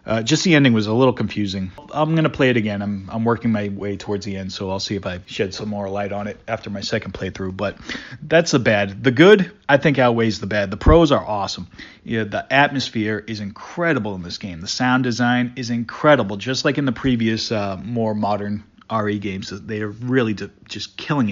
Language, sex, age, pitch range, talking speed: English, male, 30-49, 100-120 Hz, 225 wpm